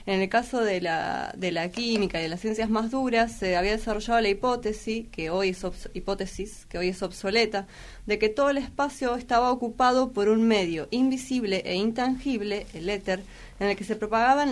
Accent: Argentinian